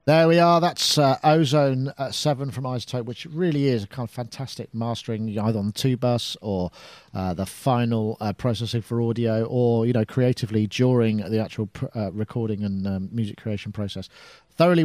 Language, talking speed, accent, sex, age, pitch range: English, 190 wpm, British, male, 40-59, 120-160 Hz